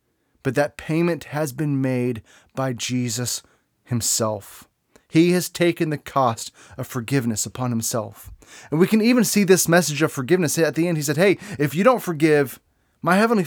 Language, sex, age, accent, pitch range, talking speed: English, male, 30-49, American, 120-165 Hz, 175 wpm